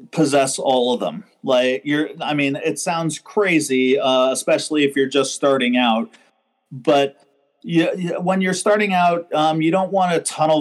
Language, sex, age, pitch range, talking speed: English, male, 40-59, 140-165 Hz, 180 wpm